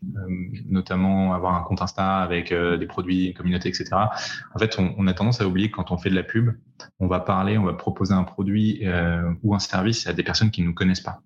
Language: French